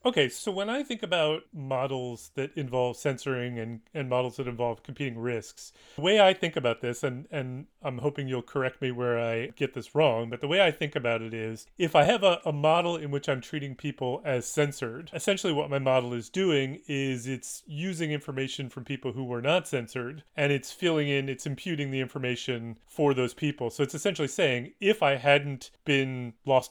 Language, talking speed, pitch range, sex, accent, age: English, 205 wpm, 125-155 Hz, male, American, 30-49